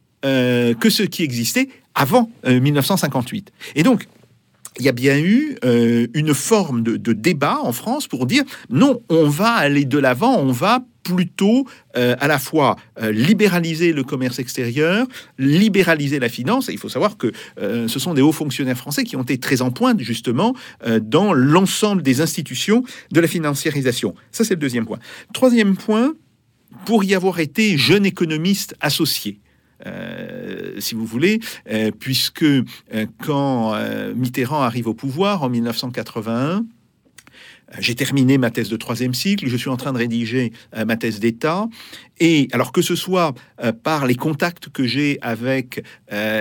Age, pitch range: 50-69, 125-190 Hz